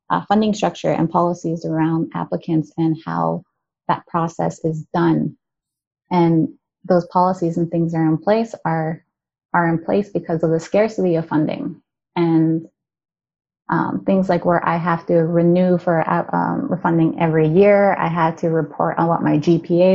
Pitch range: 160-180 Hz